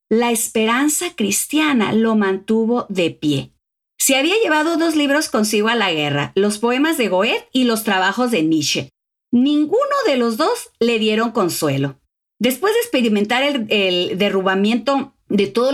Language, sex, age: Spanish, female, 40-59